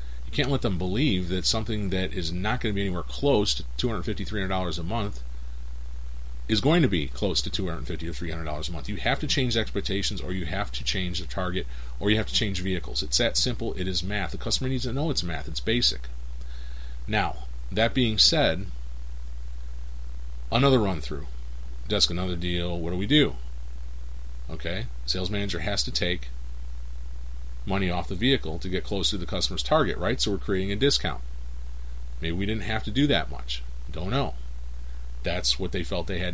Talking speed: 190 wpm